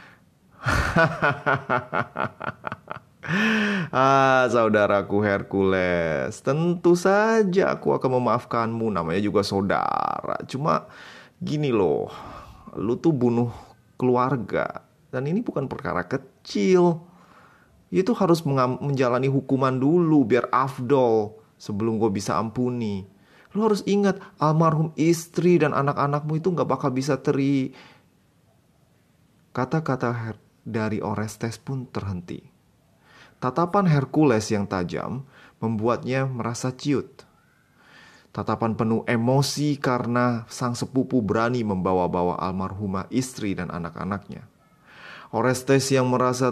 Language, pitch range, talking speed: Indonesian, 105-140 Hz, 95 wpm